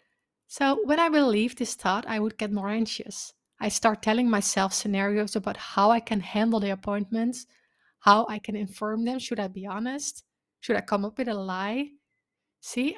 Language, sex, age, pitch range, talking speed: English, female, 20-39, 205-250 Hz, 190 wpm